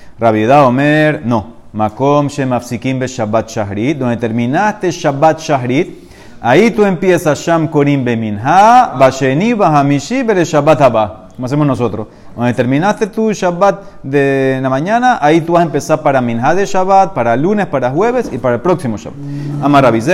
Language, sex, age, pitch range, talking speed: Spanish, male, 30-49, 120-165 Hz, 160 wpm